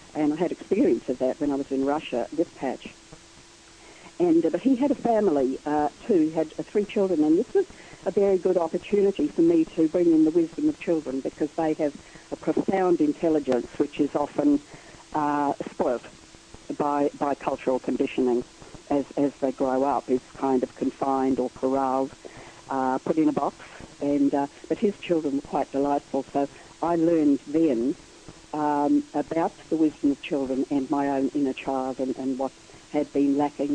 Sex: female